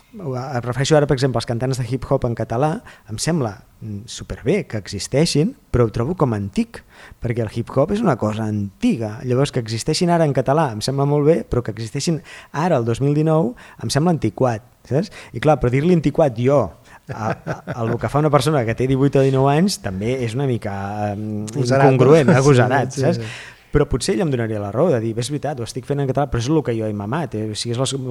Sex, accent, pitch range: male, Spanish, 115-145 Hz